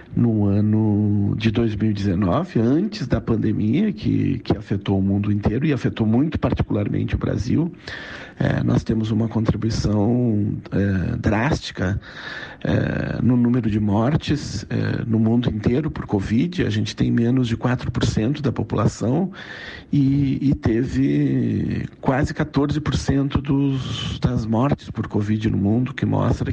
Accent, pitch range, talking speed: Brazilian, 110-135 Hz, 120 wpm